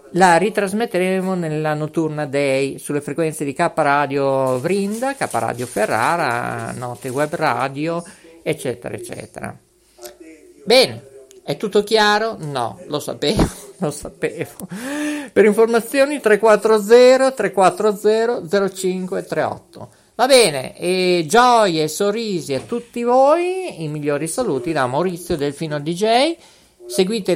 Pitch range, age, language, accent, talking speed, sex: 150-220 Hz, 50-69, Italian, native, 100 wpm, male